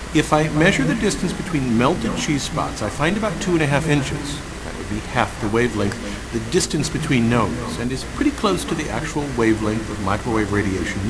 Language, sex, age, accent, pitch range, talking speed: English, male, 50-69, American, 105-155 Hz, 205 wpm